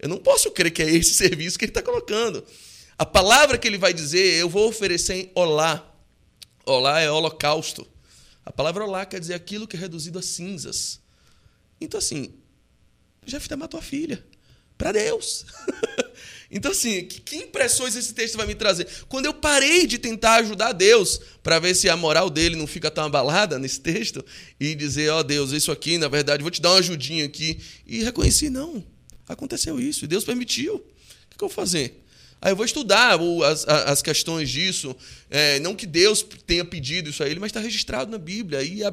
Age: 20-39